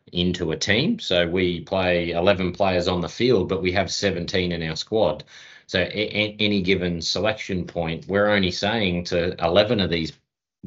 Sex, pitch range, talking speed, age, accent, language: male, 85-95 Hz, 170 wpm, 30-49, Australian, Dutch